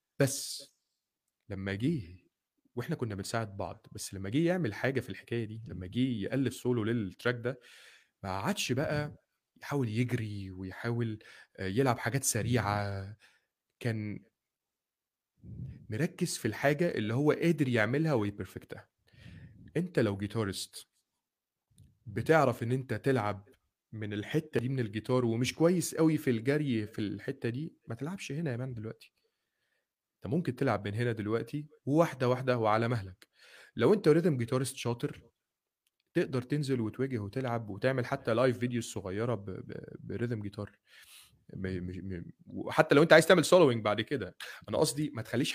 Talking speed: 135 wpm